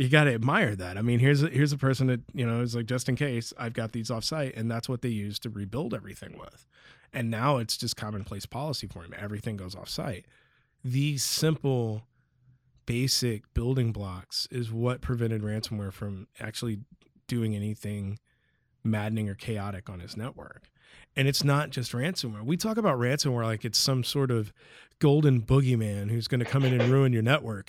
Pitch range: 110-140 Hz